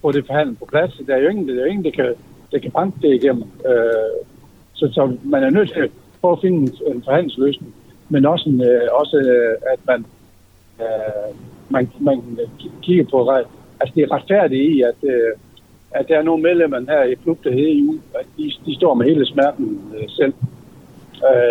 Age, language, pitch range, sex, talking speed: 60-79, Danish, 125-190 Hz, male, 195 wpm